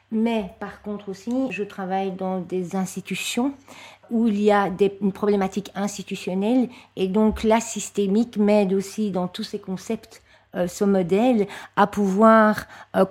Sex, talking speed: female, 150 wpm